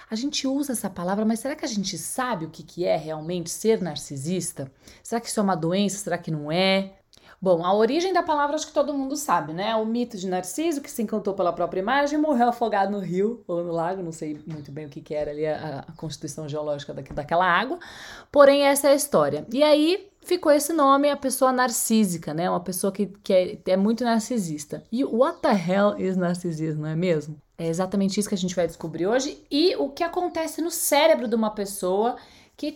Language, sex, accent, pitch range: Portuguese, female, Brazilian, 175-260 Hz